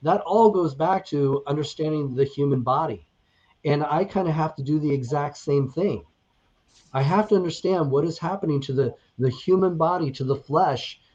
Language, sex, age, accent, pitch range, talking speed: English, male, 30-49, American, 130-155 Hz, 190 wpm